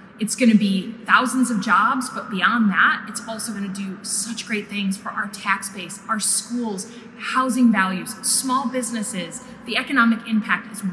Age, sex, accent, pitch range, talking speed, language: 30-49, female, American, 195-225 Hz, 165 wpm, English